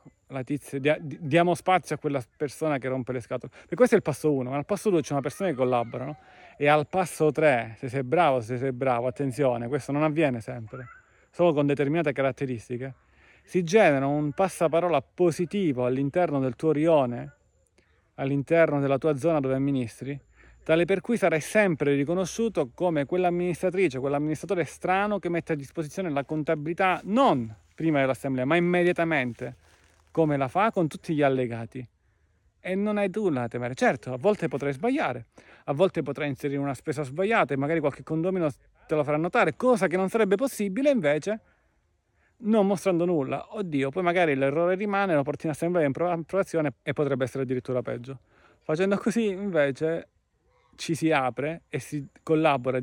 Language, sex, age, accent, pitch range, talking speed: Italian, male, 30-49, native, 135-185 Hz, 165 wpm